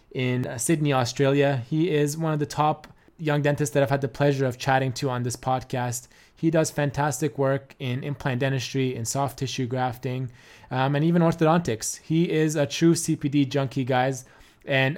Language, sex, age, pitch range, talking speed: English, male, 20-39, 125-150 Hz, 180 wpm